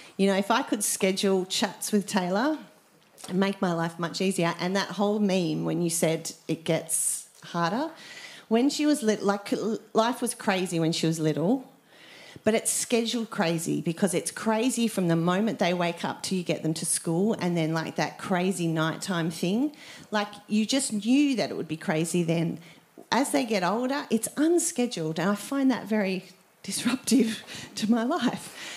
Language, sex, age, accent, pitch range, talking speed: English, female, 40-59, Australian, 175-235 Hz, 185 wpm